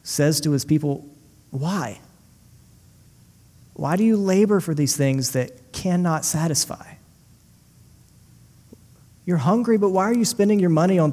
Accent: American